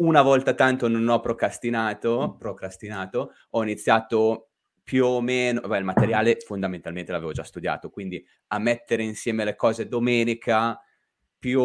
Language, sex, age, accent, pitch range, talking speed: Italian, male, 20-39, native, 100-120 Hz, 135 wpm